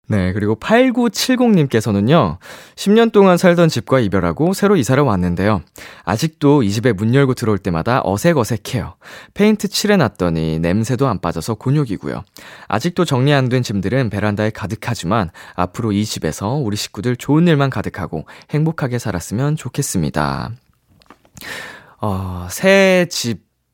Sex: male